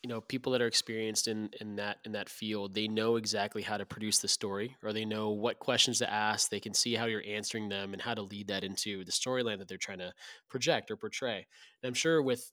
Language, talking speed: English, 255 wpm